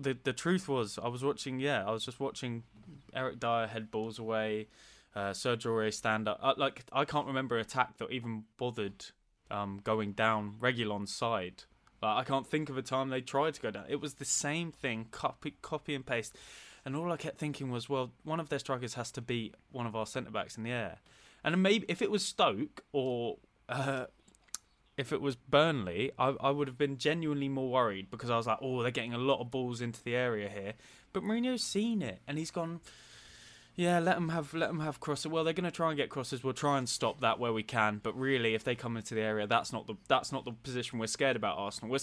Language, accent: English, British